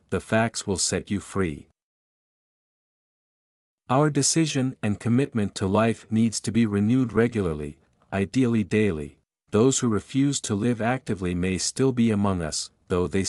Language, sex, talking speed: English, male, 145 wpm